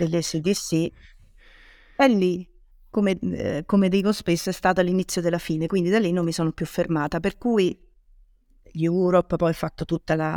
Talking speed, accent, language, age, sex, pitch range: 160 wpm, native, Italian, 30-49, female, 170-200 Hz